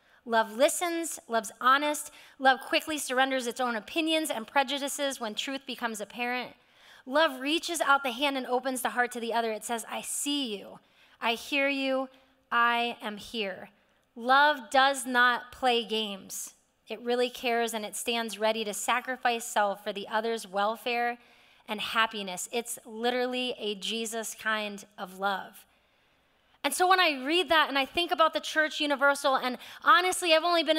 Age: 30-49